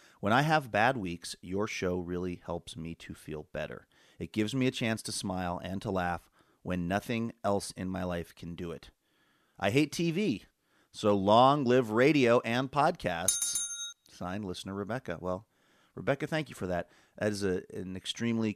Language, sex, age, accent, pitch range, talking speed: English, male, 30-49, American, 90-125 Hz, 175 wpm